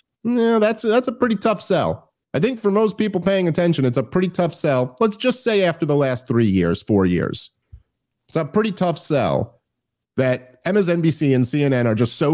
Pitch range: 115-160 Hz